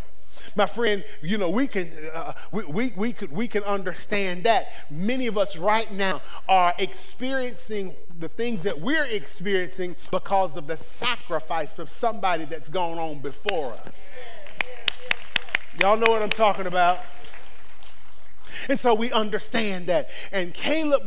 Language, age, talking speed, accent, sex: English, 40-59, 130 wpm, American, male